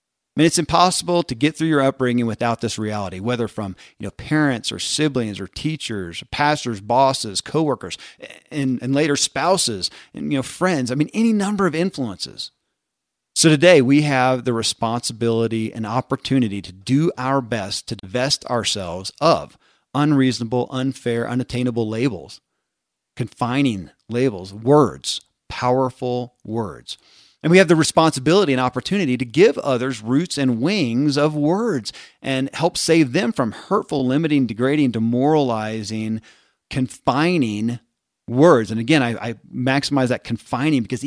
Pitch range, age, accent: 115-150 Hz, 40-59, American